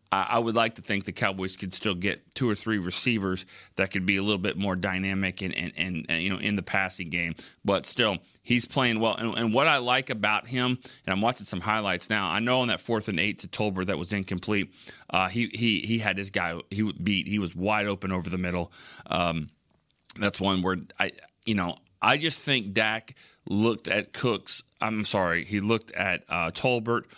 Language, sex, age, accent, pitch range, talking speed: English, male, 30-49, American, 90-115 Hz, 220 wpm